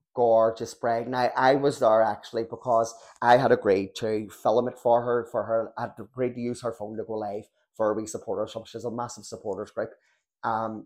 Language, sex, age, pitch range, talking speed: English, male, 30-49, 115-135 Hz, 225 wpm